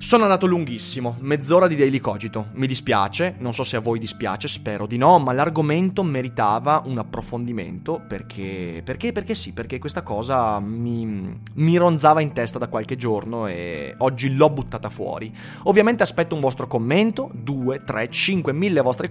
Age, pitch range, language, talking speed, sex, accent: 20-39, 110-145 Hz, Italian, 165 wpm, male, native